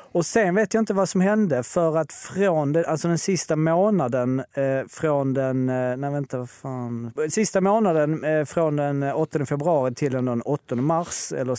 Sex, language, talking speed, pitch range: male, Swedish, 175 wpm, 115-155 Hz